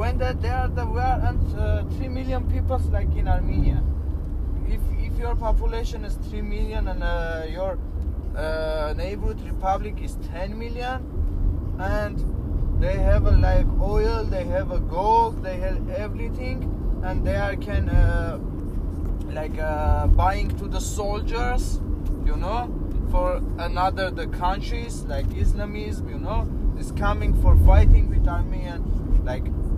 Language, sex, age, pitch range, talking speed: English, male, 20-39, 75-85 Hz, 140 wpm